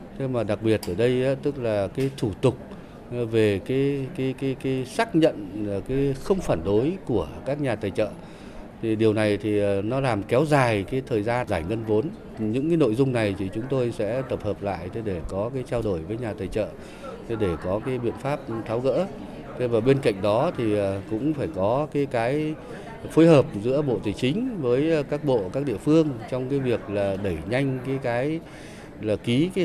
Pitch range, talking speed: 105-135 Hz, 210 wpm